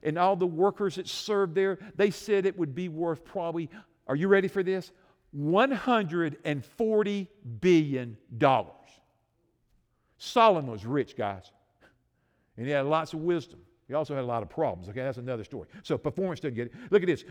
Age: 50-69